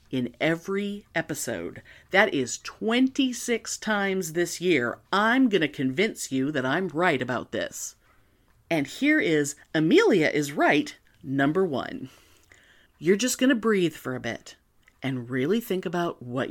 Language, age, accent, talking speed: English, 40-59, American, 140 wpm